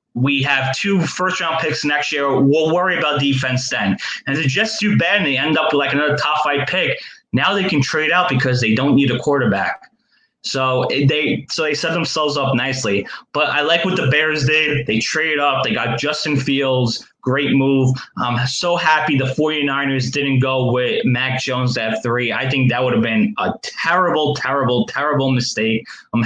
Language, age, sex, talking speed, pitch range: English, 20-39, male, 200 wpm, 125-150 Hz